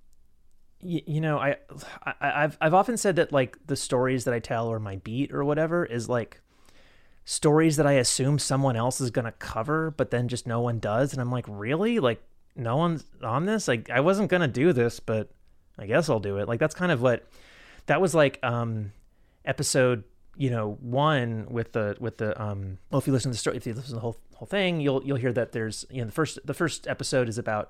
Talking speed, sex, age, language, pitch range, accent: 225 wpm, male, 30-49, English, 110-140 Hz, American